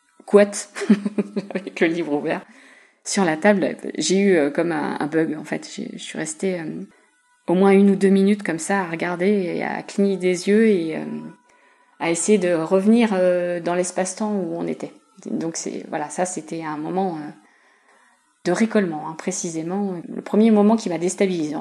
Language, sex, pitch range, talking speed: French, female, 160-200 Hz, 180 wpm